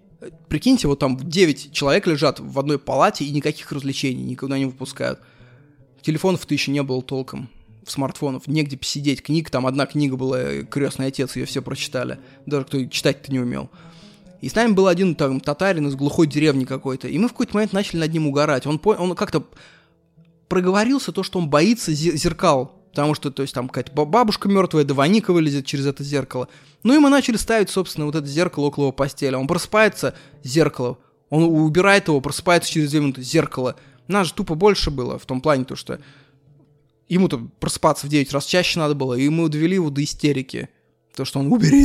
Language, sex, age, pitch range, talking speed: Russian, male, 20-39, 135-175 Hz, 190 wpm